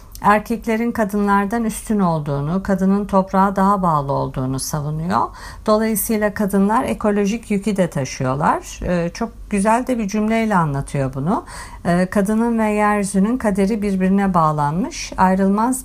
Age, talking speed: 50-69, 115 wpm